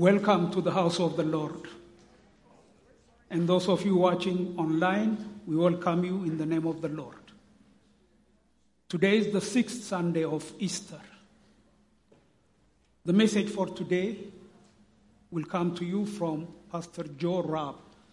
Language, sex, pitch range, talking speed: English, male, 155-200 Hz, 135 wpm